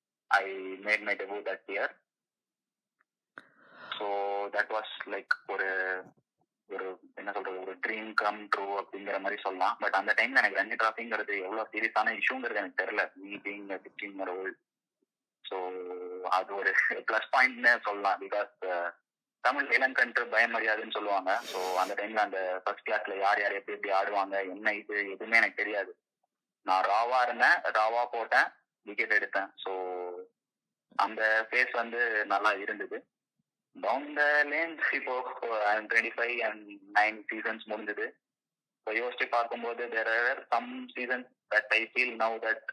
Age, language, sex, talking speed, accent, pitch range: 20-39, Tamil, male, 155 wpm, native, 95-110 Hz